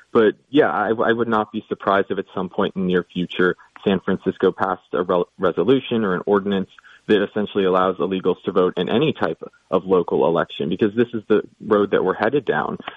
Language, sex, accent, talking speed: English, male, American, 210 wpm